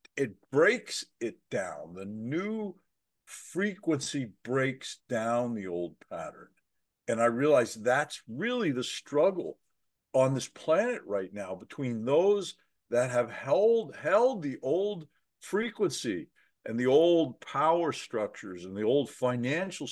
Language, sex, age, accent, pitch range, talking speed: English, male, 50-69, American, 110-165 Hz, 125 wpm